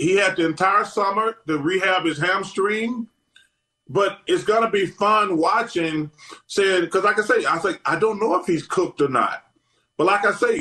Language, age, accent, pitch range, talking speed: English, 30-49, American, 170-250 Hz, 200 wpm